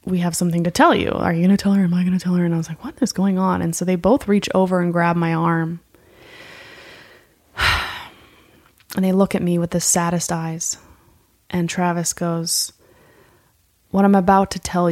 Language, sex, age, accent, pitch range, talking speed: English, female, 20-39, American, 155-180 Hz, 215 wpm